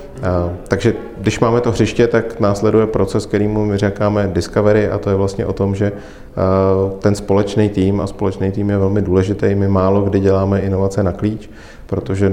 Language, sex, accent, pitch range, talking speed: Czech, male, native, 95-100 Hz, 175 wpm